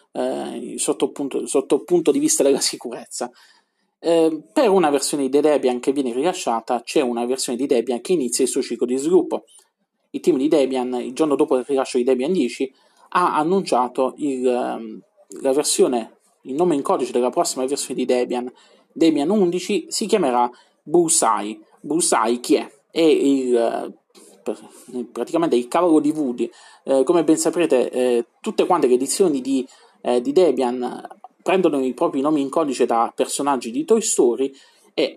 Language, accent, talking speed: Italian, native, 165 wpm